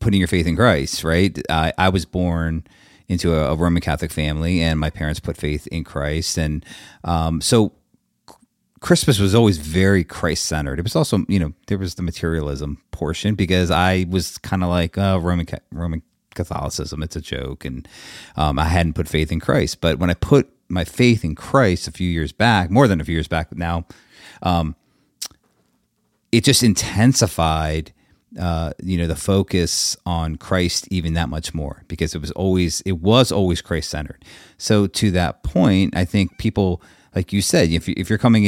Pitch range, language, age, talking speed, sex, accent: 80-100 Hz, English, 30-49, 185 wpm, male, American